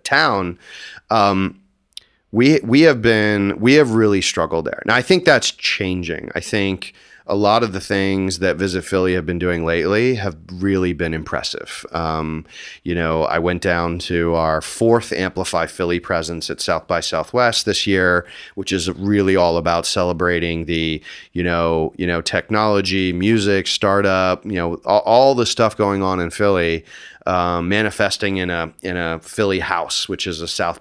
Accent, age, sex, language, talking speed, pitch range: American, 30-49, male, English, 175 wpm, 85-100 Hz